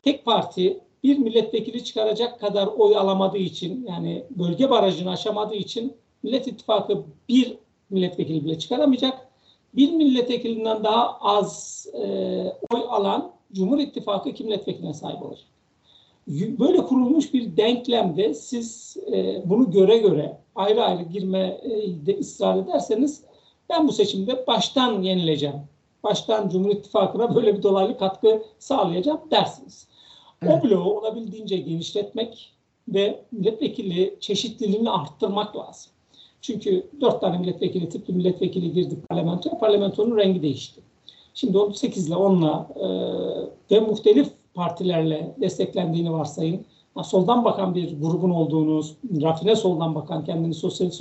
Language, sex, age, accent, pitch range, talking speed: Turkish, male, 60-79, native, 180-235 Hz, 120 wpm